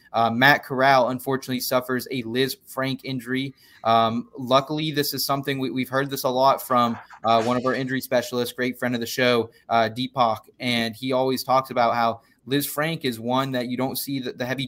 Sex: male